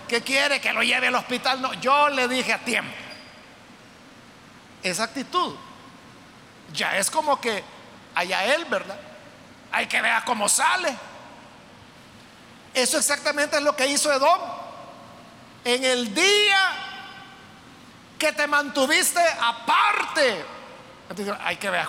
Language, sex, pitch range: Spanish, male, 240-305 Hz